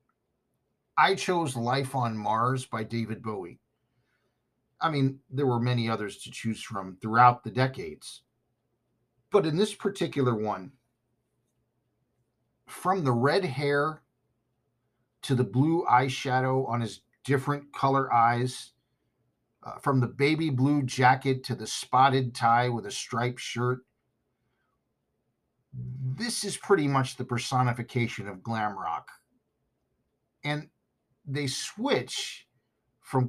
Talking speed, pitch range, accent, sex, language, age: 115 wpm, 120-135 Hz, American, male, English, 50-69